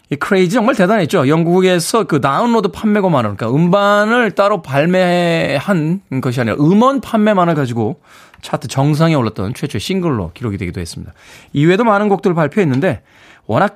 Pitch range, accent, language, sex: 120-185 Hz, native, Korean, male